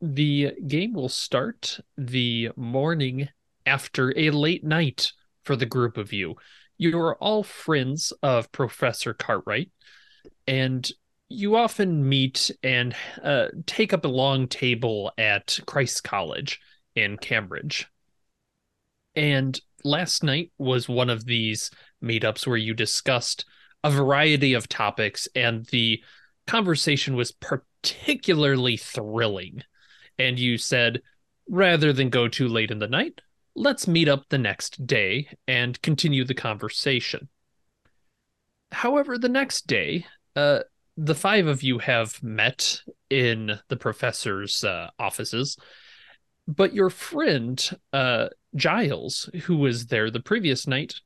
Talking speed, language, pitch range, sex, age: 125 wpm, English, 120-160 Hz, male, 20-39